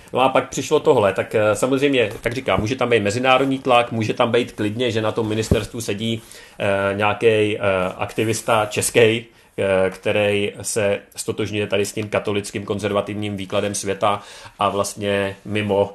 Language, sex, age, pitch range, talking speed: Czech, male, 30-49, 95-110 Hz, 145 wpm